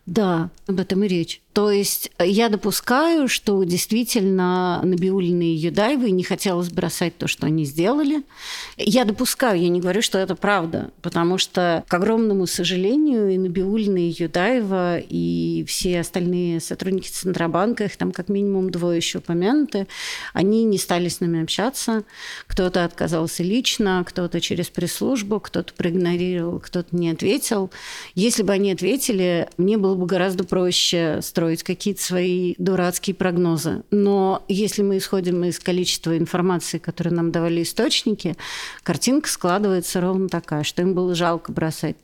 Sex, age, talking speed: female, 40-59, 145 wpm